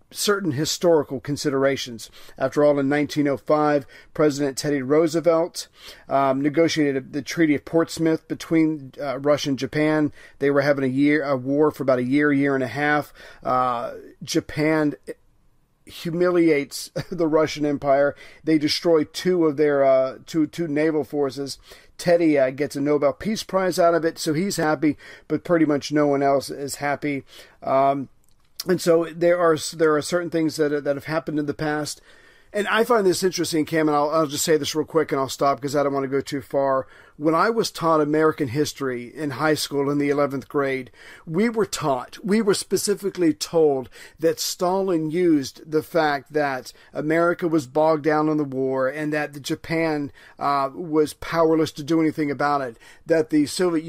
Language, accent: English, American